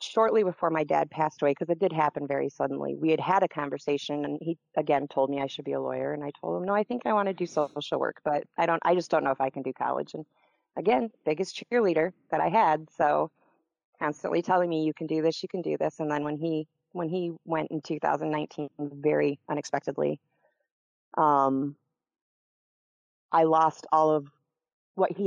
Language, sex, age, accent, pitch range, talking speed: English, female, 30-49, American, 145-165 Hz, 210 wpm